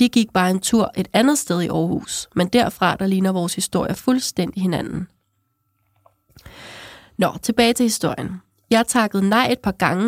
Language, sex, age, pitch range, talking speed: Danish, female, 30-49, 175-230 Hz, 165 wpm